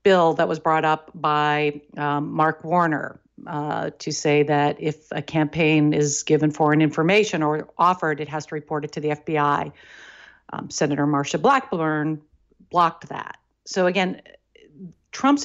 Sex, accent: female, American